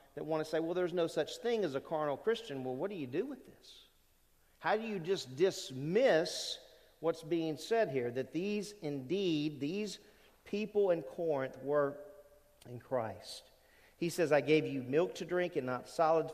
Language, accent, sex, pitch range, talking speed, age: English, American, male, 140-190 Hz, 185 wpm, 40-59